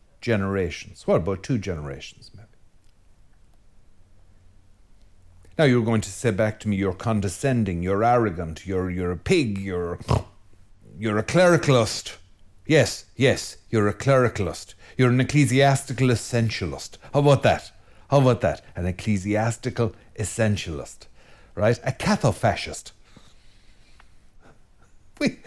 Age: 60-79